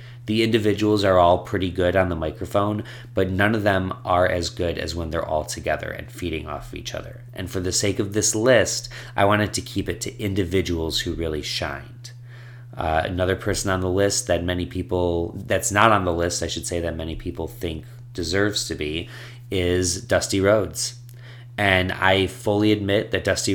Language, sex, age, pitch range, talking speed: English, male, 30-49, 90-110 Hz, 195 wpm